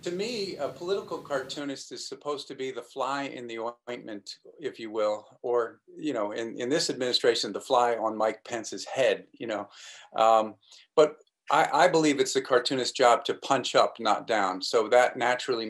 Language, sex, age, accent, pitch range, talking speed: Dutch, male, 40-59, American, 105-150 Hz, 185 wpm